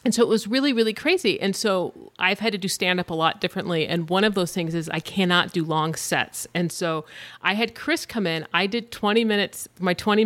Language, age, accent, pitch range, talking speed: English, 40-59, American, 170-215 Hz, 245 wpm